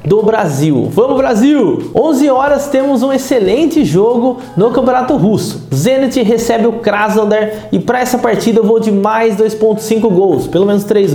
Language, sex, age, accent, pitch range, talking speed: Portuguese, male, 20-39, Brazilian, 200-250 Hz, 160 wpm